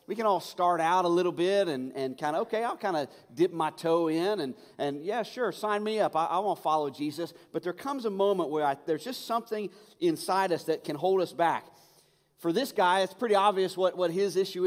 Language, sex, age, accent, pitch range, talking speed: English, male, 40-59, American, 150-205 Hz, 245 wpm